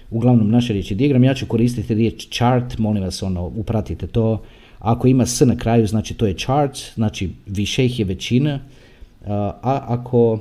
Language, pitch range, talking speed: Croatian, 105-140 Hz, 165 wpm